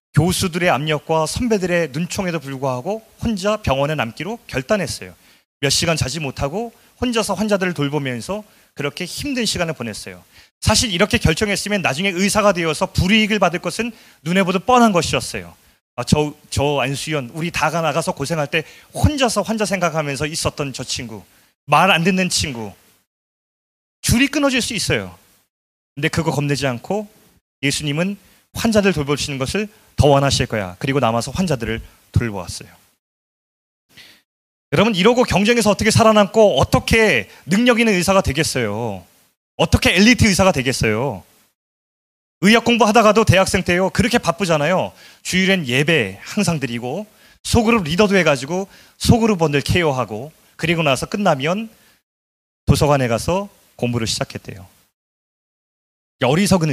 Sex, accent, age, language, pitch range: male, native, 30-49, Korean, 135-205 Hz